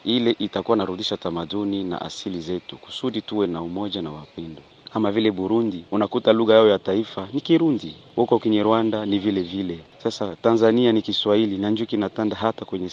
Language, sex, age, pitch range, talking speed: Swahili, male, 40-59, 100-125 Hz, 175 wpm